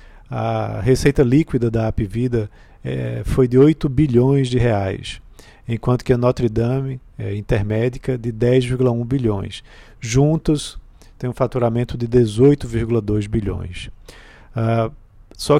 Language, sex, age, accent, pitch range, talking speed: Portuguese, male, 40-59, Brazilian, 110-135 Hz, 125 wpm